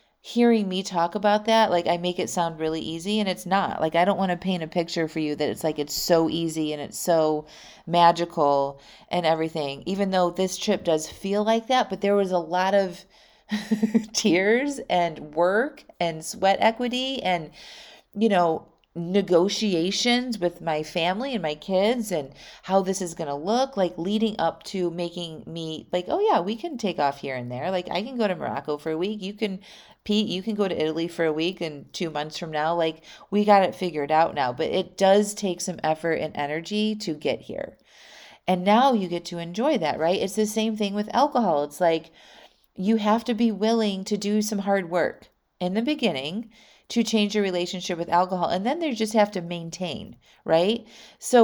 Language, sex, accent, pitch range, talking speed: English, female, American, 165-210 Hz, 205 wpm